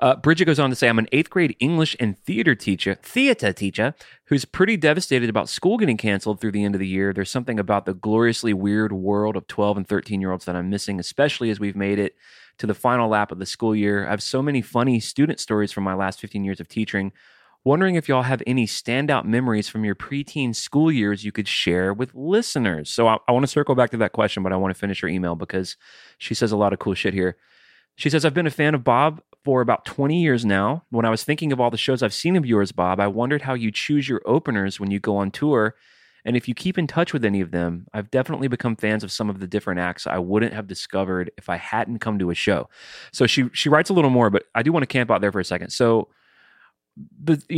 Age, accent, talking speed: 30-49, American, 250 wpm